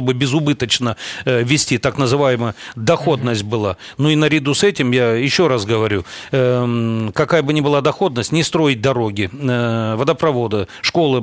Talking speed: 155 wpm